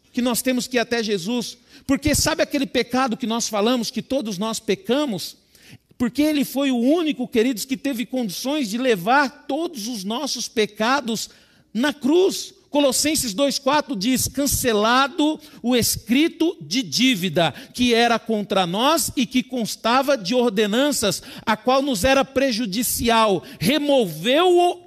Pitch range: 220-300 Hz